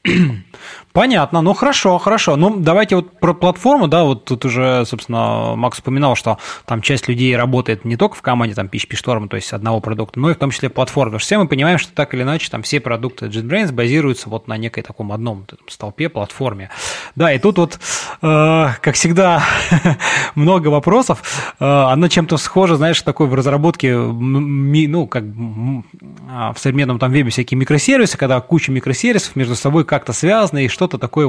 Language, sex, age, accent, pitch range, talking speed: Russian, male, 20-39, native, 125-160 Hz, 175 wpm